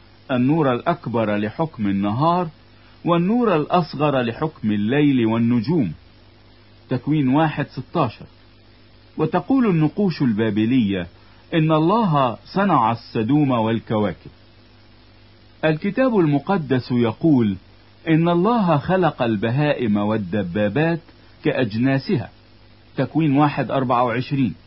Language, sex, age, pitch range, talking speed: Italian, male, 50-69, 110-155 Hz, 80 wpm